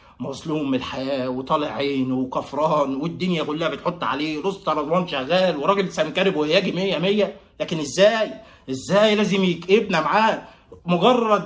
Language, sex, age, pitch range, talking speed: Arabic, male, 30-49, 160-215 Hz, 135 wpm